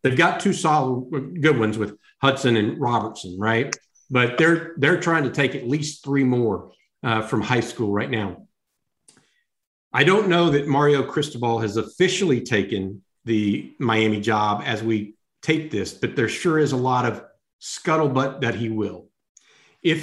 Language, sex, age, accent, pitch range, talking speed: English, male, 50-69, American, 115-155 Hz, 165 wpm